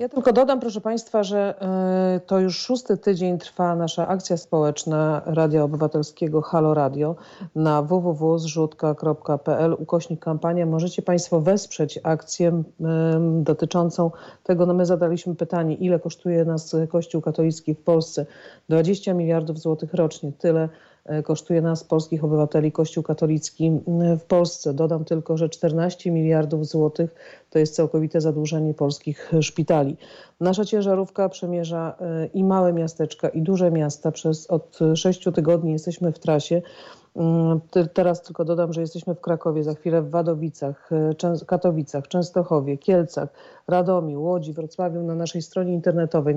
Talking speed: 130 wpm